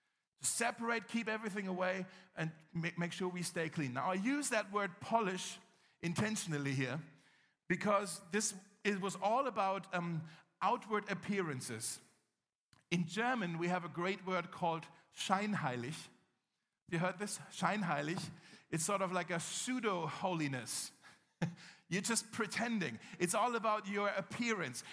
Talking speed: 130 wpm